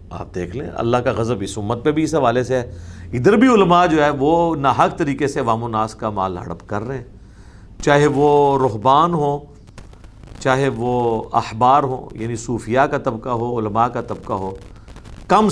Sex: male